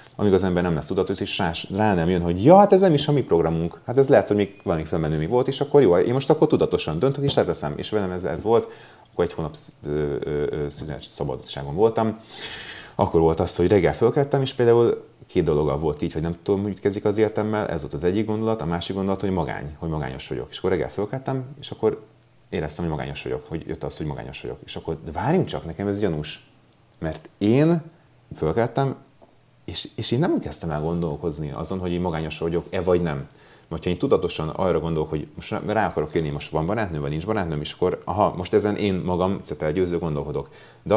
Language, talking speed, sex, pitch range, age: Hungarian, 220 wpm, male, 80-110 Hz, 30-49